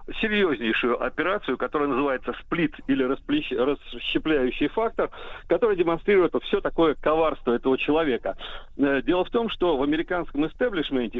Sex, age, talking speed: male, 50-69, 125 wpm